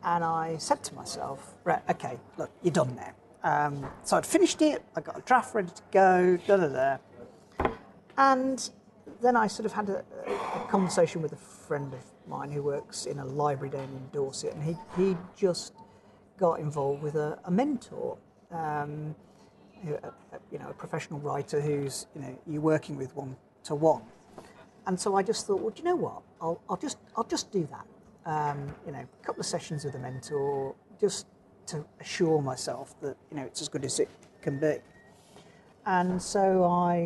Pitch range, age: 150-210 Hz, 40-59